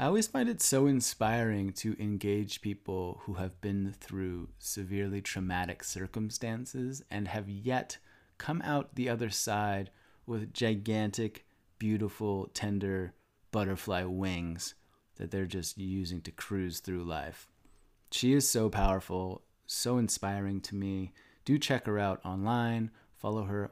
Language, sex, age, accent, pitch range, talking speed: English, male, 30-49, American, 100-125 Hz, 135 wpm